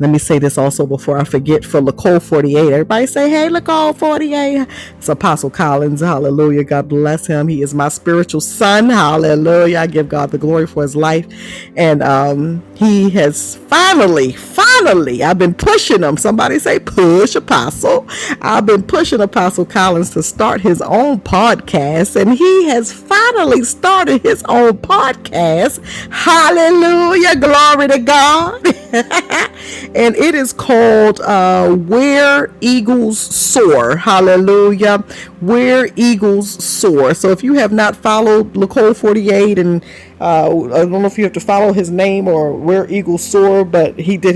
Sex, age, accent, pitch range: female, 50-69, American, 165-225 Hz